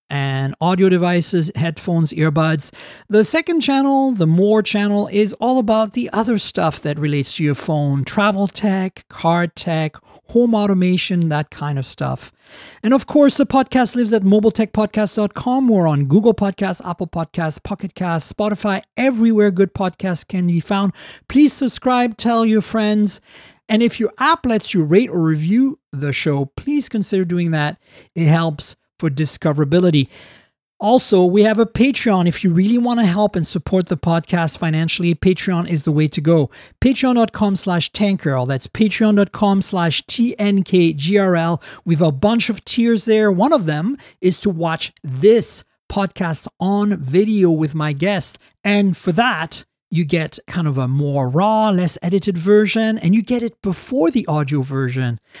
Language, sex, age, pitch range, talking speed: English, male, 40-59, 160-215 Hz, 160 wpm